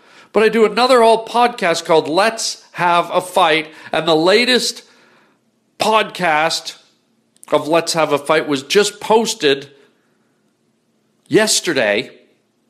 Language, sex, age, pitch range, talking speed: English, male, 50-69, 155-200 Hz, 115 wpm